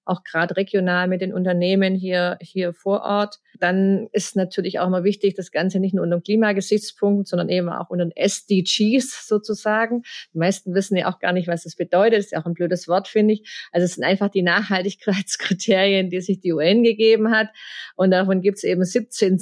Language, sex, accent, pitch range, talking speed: German, female, German, 180-205 Hz, 205 wpm